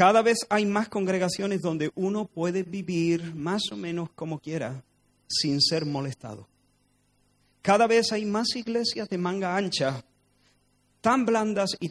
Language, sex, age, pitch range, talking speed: Spanish, male, 40-59, 145-195 Hz, 140 wpm